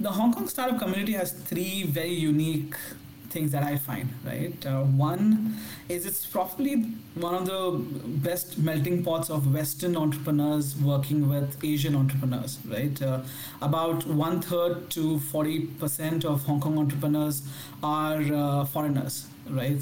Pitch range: 145-170 Hz